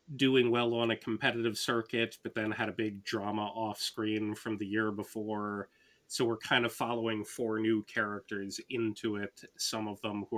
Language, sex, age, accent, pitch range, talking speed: English, male, 30-49, American, 100-115 Hz, 185 wpm